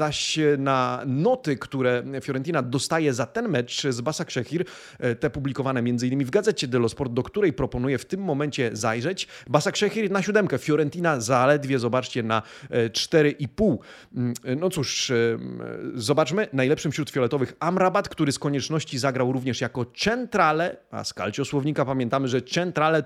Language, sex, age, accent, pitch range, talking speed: Polish, male, 30-49, native, 125-155 Hz, 145 wpm